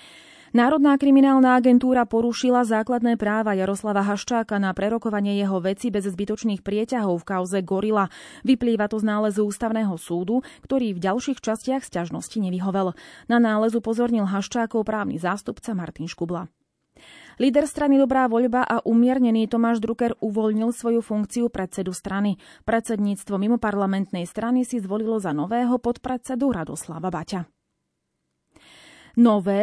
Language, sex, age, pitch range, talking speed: Slovak, female, 30-49, 195-245 Hz, 125 wpm